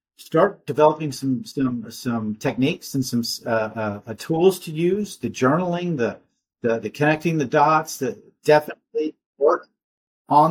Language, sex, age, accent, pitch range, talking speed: English, male, 50-69, American, 130-170 Hz, 150 wpm